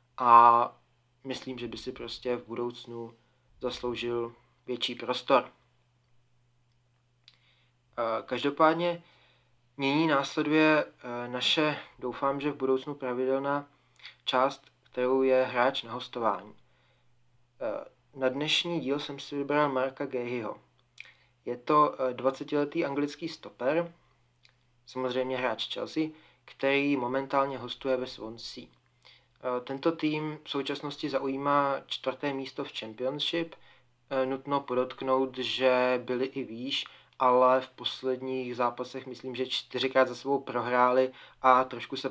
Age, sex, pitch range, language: 30-49, male, 120-135 Hz, Czech